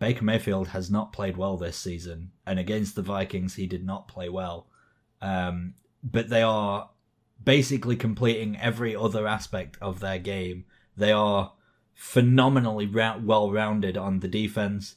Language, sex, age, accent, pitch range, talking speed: English, male, 20-39, British, 95-115 Hz, 150 wpm